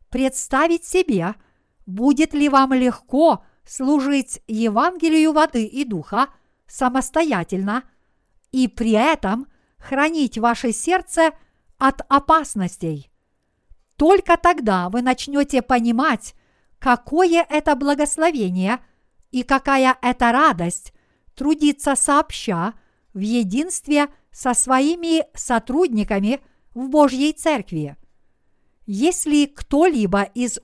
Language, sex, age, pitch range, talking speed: Russian, female, 50-69, 230-295 Hz, 90 wpm